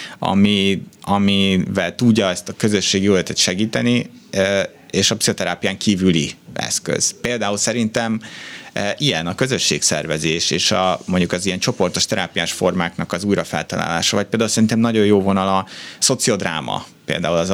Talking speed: 125 wpm